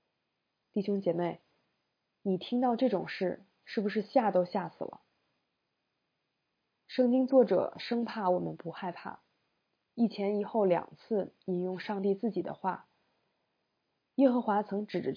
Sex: female